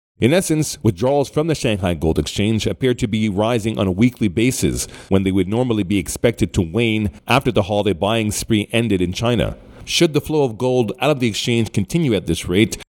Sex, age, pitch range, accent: male, 40-59, 105-130 Hz, American